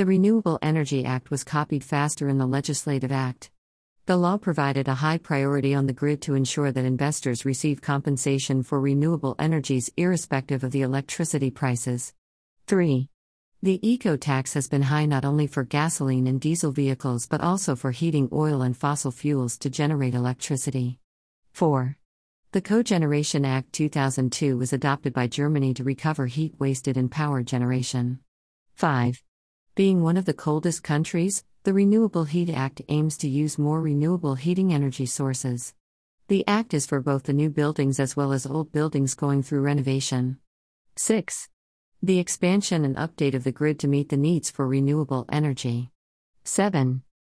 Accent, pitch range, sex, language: American, 130-155 Hz, female, English